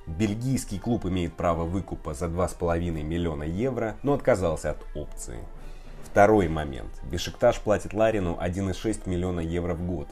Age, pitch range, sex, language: 20-39, 85-105 Hz, male, Russian